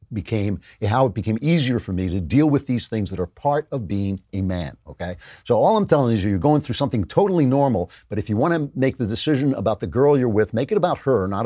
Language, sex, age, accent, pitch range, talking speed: English, male, 50-69, American, 95-135 Hz, 260 wpm